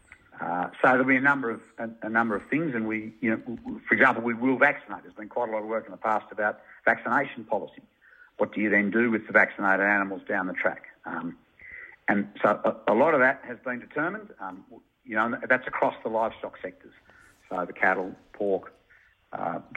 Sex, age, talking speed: male, 60-79, 215 wpm